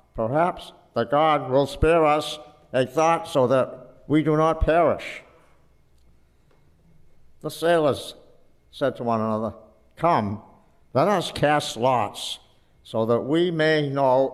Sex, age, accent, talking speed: male, 60-79, American, 125 wpm